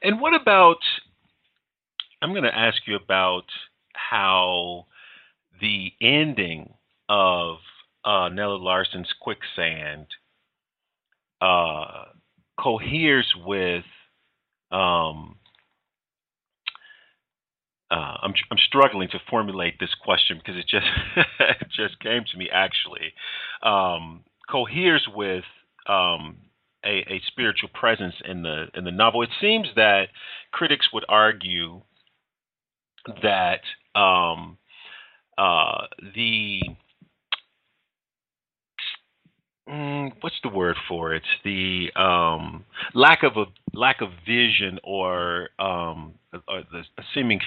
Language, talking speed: English, 100 wpm